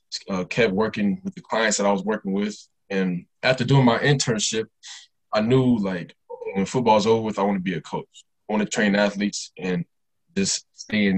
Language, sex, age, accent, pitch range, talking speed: English, male, 20-39, American, 100-130 Hz, 210 wpm